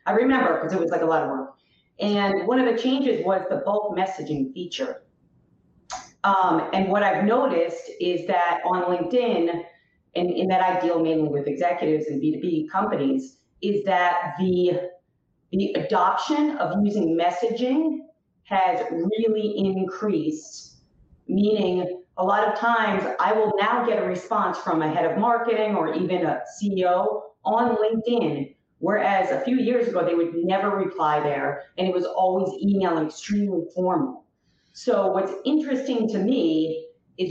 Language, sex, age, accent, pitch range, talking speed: English, female, 40-59, American, 170-215 Hz, 155 wpm